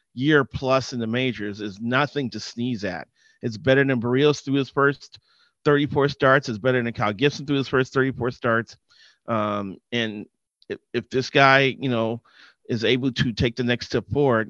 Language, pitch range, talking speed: English, 115-140 Hz, 185 wpm